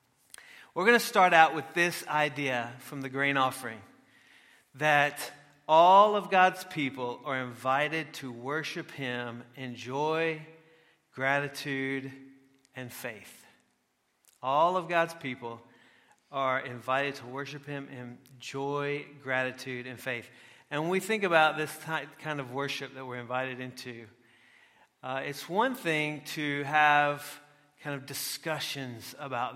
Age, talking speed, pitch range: 40-59, 130 wpm, 130-155 Hz